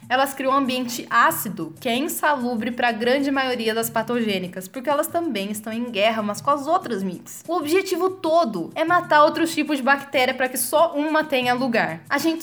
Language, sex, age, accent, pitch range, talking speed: Portuguese, female, 10-29, Brazilian, 225-305 Hz, 205 wpm